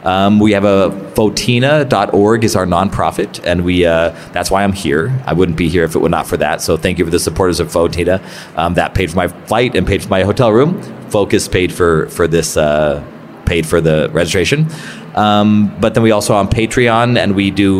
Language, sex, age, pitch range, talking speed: English, male, 30-49, 90-115 Hz, 215 wpm